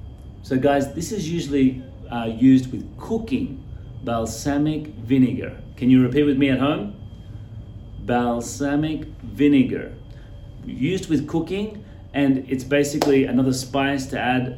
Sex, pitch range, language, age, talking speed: male, 110-140 Hz, English, 30-49, 125 wpm